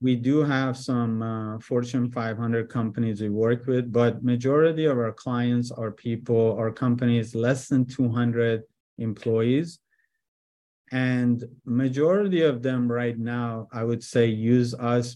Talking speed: 140 wpm